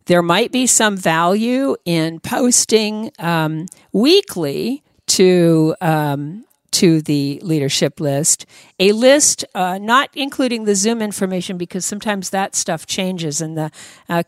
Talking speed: 130 wpm